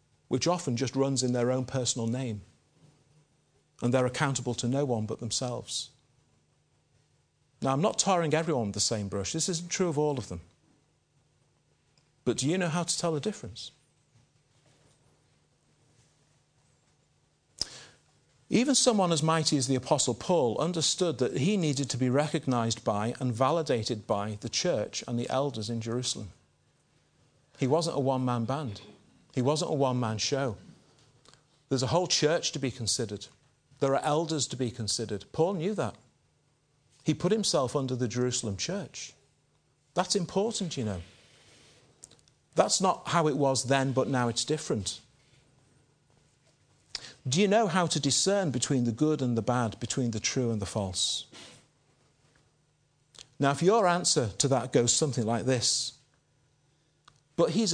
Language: English